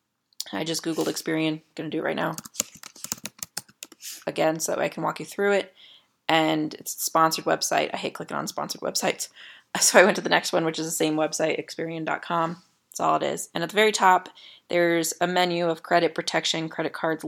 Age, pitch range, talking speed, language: 20-39, 160-195 Hz, 210 wpm, English